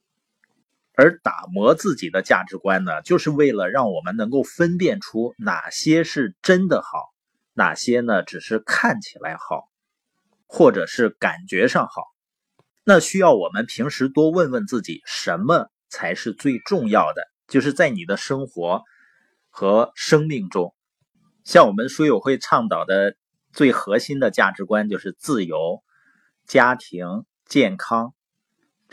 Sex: male